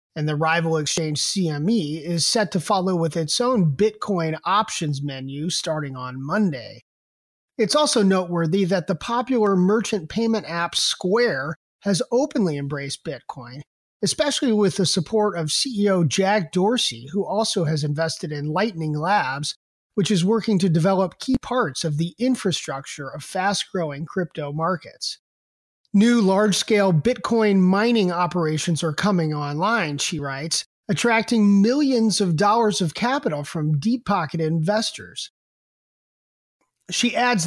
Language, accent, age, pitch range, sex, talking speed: English, American, 30-49, 160-220 Hz, male, 130 wpm